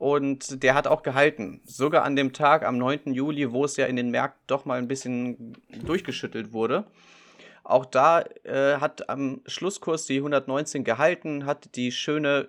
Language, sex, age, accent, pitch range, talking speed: German, male, 30-49, German, 125-145 Hz, 175 wpm